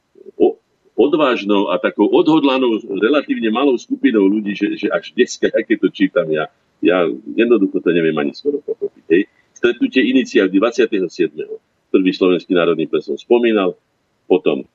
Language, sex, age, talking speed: Slovak, male, 50-69, 135 wpm